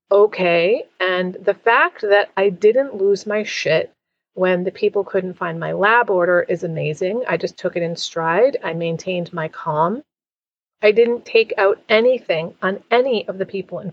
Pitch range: 185-275 Hz